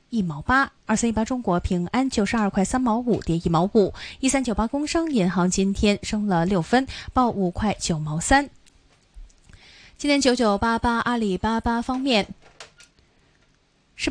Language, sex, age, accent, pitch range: Chinese, female, 20-39, native, 185-250 Hz